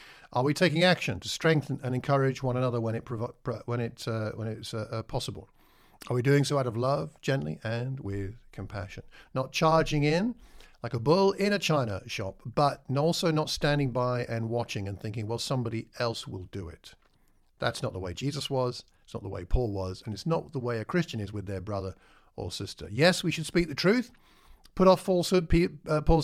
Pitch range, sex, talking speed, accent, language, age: 115-160 Hz, male, 210 wpm, British, English, 50-69